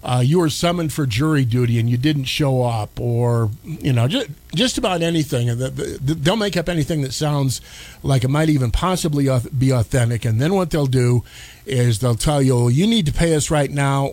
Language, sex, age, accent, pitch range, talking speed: English, male, 50-69, American, 115-145 Hz, 205 wpm